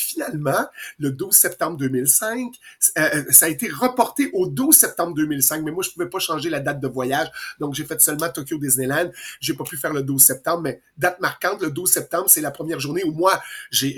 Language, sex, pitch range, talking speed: French, male, 145-240 Hz, 220 wpm